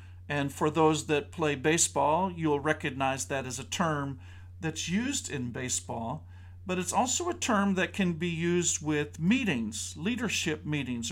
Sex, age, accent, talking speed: male, 50-69, American, 155 wpm